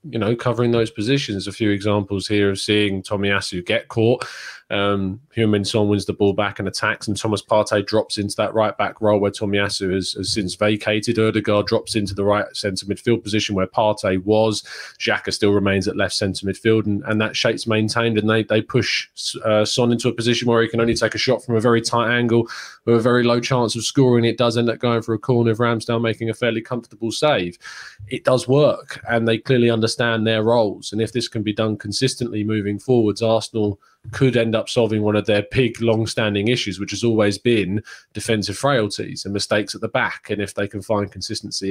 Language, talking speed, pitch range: English, 215 wpm, 105-120 Hz